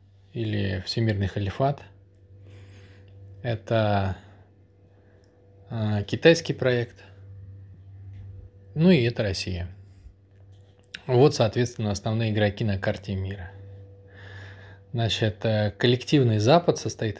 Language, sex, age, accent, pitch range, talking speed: Russian, male, 20-39, native, 100-120 Hz, 75 wpm